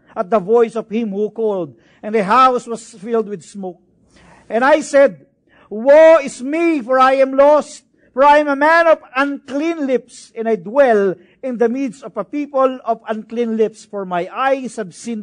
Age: 50-69